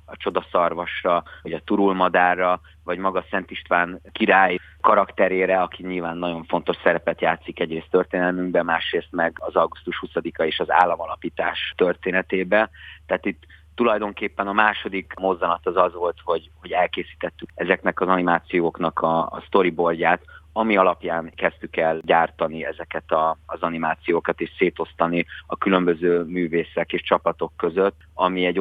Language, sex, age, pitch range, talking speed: Hungarian, male, 30-49, 85-90 Hz, 135 wpm